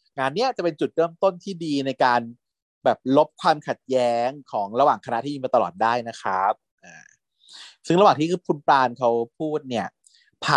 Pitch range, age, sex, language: 125-170 Hz, 30-49, male, Thai